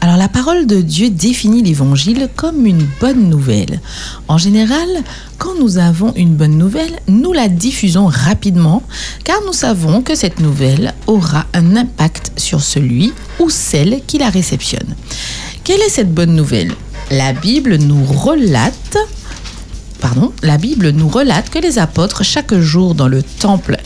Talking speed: 150 wpm